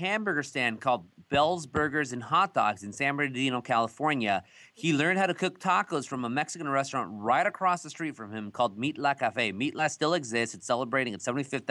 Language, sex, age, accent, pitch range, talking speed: English, male, 30-49, American, 120-160 Hz, 205 wpm